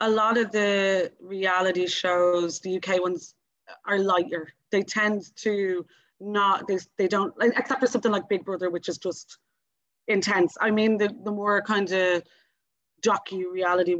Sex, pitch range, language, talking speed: female, 180-215 Hz, English, 155 wpm